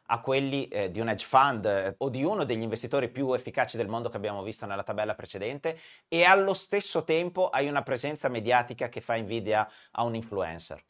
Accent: native